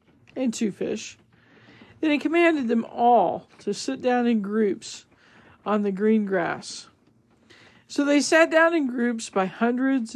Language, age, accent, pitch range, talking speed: English, 50-69, American, 205-255 Hz, 150 wpm